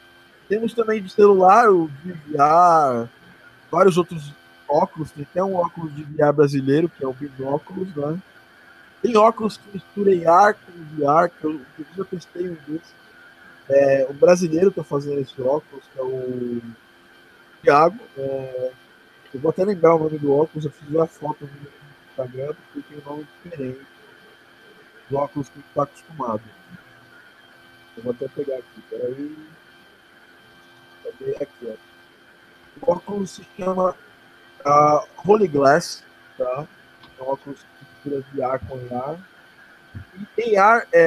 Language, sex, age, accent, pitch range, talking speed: Portuguese, male, 20-39, Brazilian, 135-180 Hz, 150 wpm